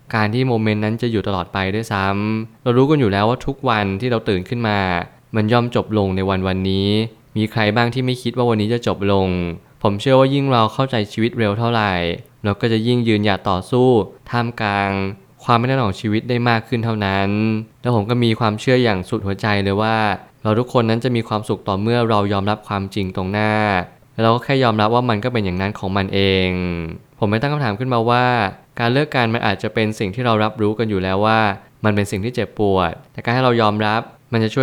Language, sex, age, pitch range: Thai, male, 20-39, 100-120 Hz